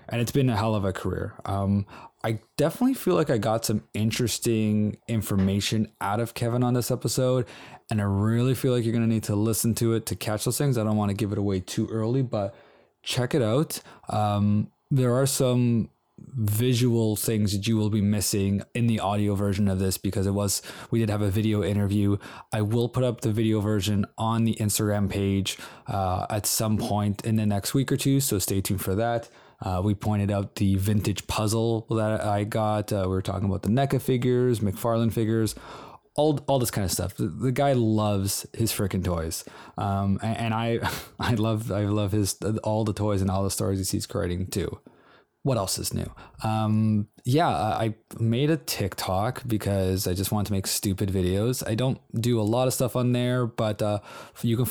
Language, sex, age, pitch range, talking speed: English, male, 20-39, 100-115 Hz, 210 wpm